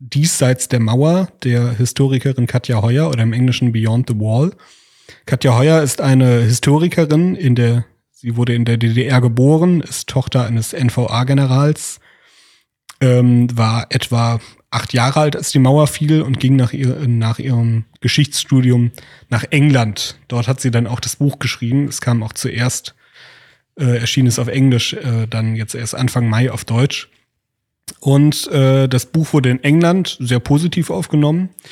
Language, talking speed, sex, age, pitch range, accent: German, 160 wpm, male, 30-49, 120-140 Hz, German